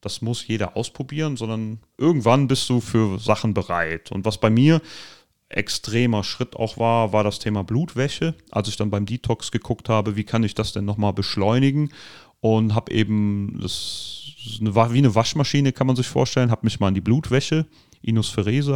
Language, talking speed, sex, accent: German, 175 wpm, male, German